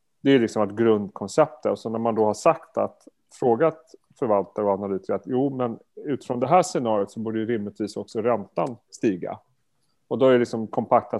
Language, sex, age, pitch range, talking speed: Swedish, male, 30-49, 105-125 Hz, 205 wpm